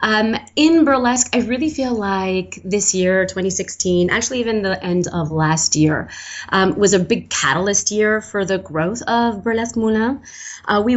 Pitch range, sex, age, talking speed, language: 180-215 Hz, female, 30-49, 165 wpm, English